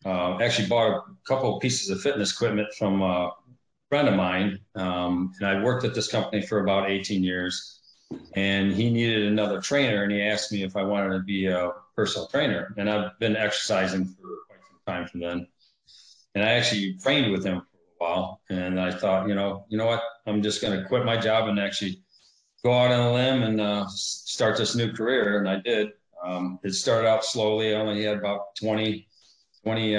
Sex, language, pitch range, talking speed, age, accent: male, English, 95-110 Hz, 210 wpm, 40-59, American